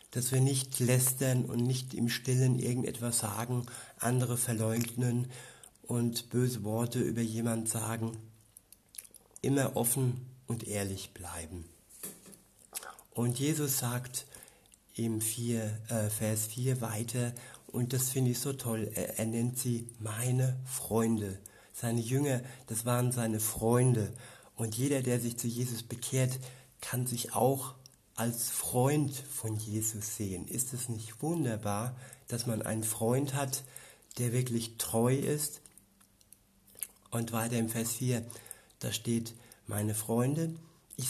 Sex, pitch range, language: male, 110-125 Hz, German